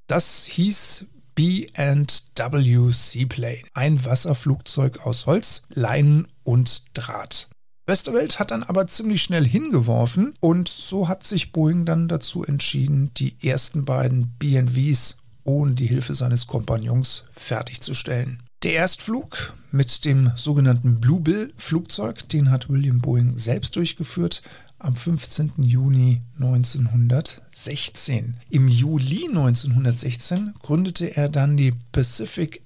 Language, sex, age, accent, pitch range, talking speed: German, male, 50-69, German, 125-155 Hz, 110 wpm